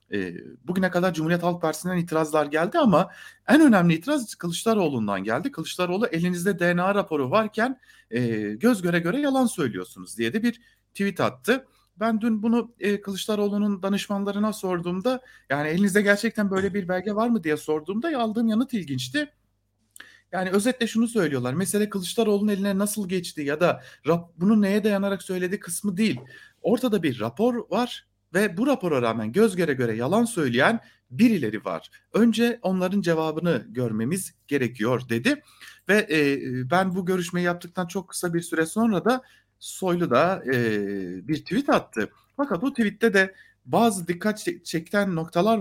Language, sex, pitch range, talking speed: German, male, 155-225 Hz, 145 wpm